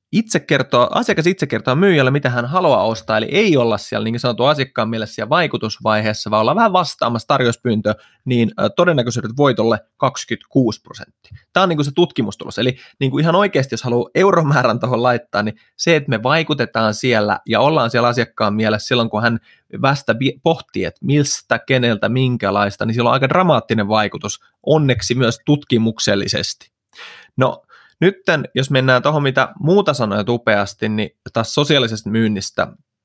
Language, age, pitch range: Finnish, 20-39, 110-140 Hz